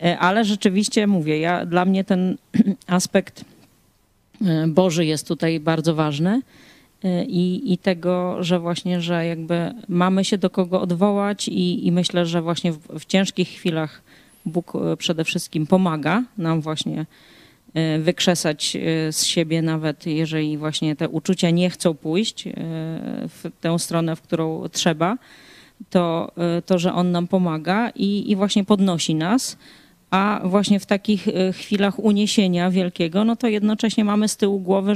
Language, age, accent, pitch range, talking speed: Polish, 30-49, native, 170-200 Hz, 140 wpm